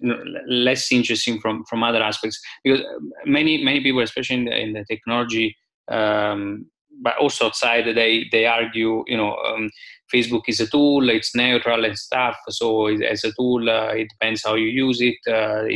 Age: 20-39